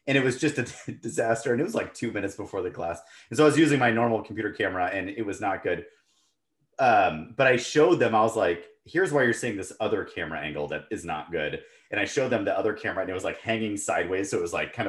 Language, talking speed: English, 270 wpm